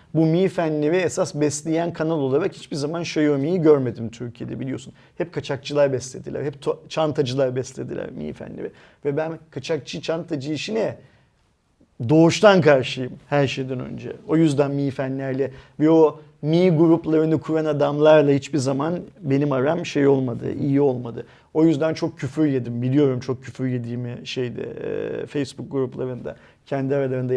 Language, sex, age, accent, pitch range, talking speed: Turkish, male, 40-59, native, 125-155 Hz, 140 wpm